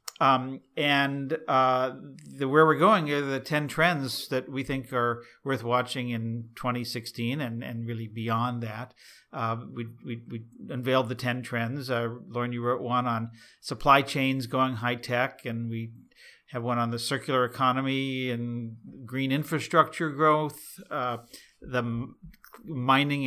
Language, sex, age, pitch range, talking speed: English, male, 50-69, 120-135 Hz, 145 wpm